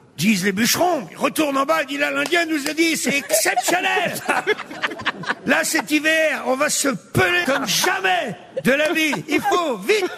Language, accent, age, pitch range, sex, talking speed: French, French, 50-69, 195-305 Hz, male, 185 wpm